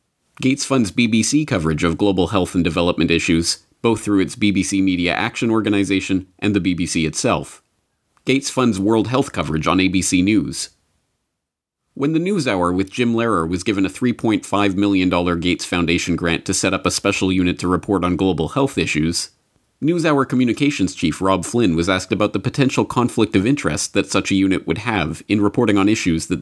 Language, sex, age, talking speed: English, male, 30-49, 180 wpm